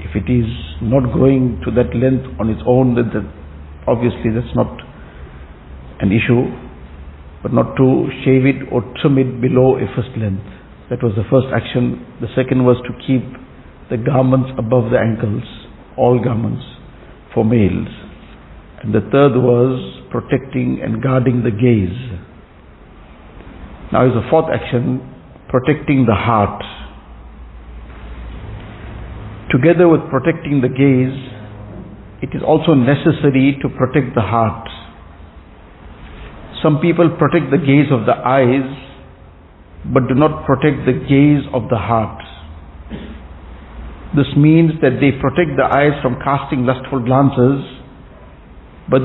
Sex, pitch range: male, 100-140 Hz